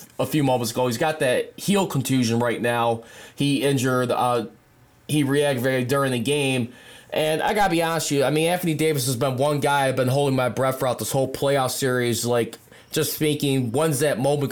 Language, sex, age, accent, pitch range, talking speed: English, male, 20-39, American, 130-160 Hz, 215 wpm